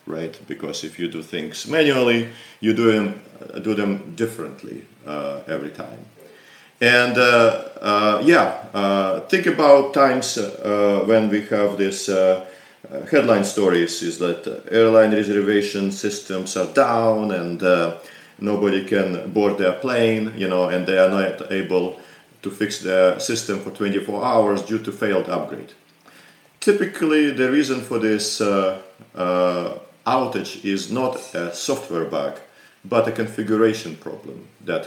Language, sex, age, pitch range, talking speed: English, male, 40-59, 90-110 Hz, 140 wpm